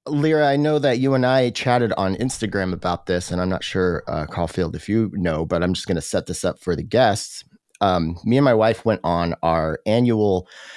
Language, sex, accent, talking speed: English, male, American, 230 wpm